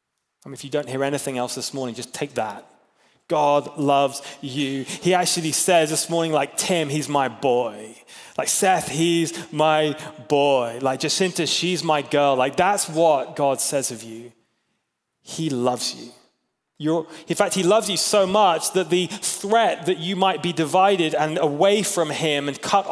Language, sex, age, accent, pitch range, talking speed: English, male, 20-39, British, 140-170 Hz, 170 wpm